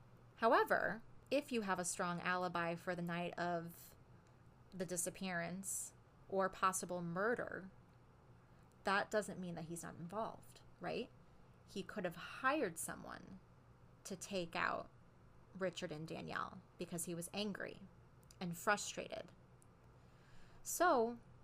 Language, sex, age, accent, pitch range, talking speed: English, female, 30-49, American, 175-200 Hz, 120 wpm